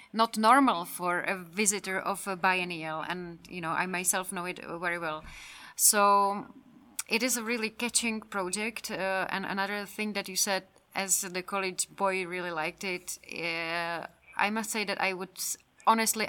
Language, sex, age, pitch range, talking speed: Czech, female, 30-49, 180-225 Hz, 170 wpm